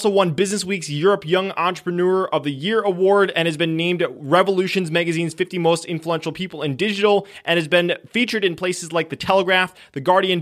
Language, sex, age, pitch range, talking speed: English, male, 20-39, 155-195 Hz, 190 wpm